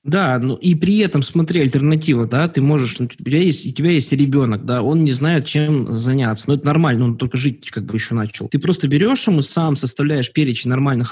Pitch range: 125-160 Hz